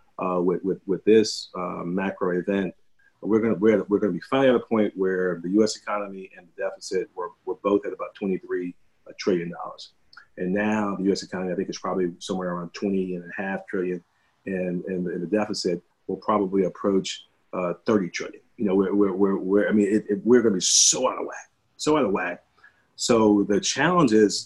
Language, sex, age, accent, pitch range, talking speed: English, male, 40-59, American, 95-120 Hz, 205 wpm